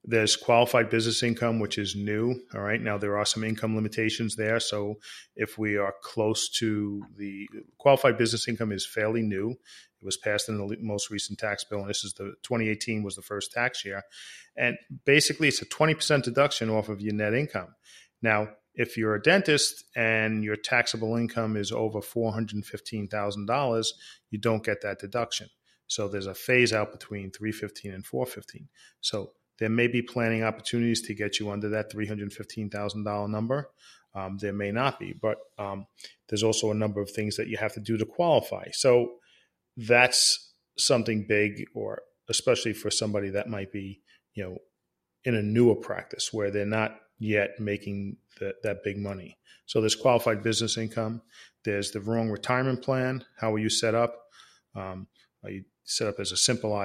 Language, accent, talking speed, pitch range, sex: English, American, 180 wpm, 105-115 Hz, male